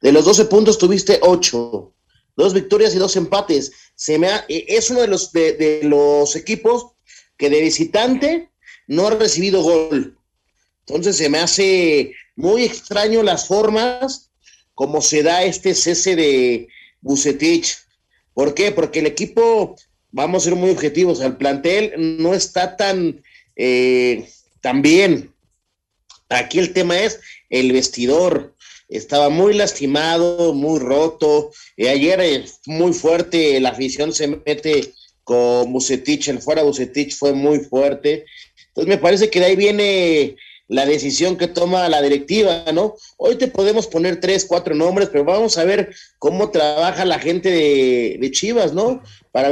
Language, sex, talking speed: Spanish, male, 150 wpm